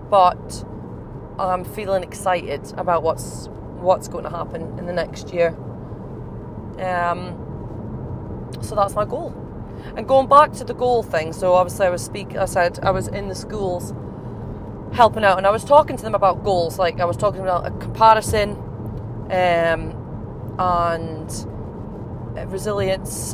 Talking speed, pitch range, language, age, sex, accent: 150 wpm, 165-210 Hz, English, 20-39, female, British